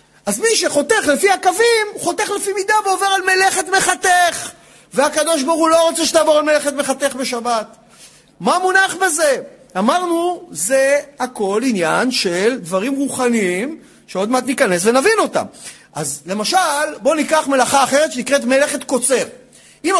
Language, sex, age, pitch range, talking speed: Hebrew, male, 40-59, 240-335 Hz, 140 wpm